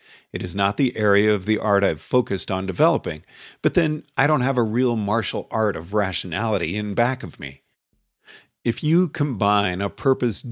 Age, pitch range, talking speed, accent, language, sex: 50-69, 100-125 Hz, 185 wpm, American, English, male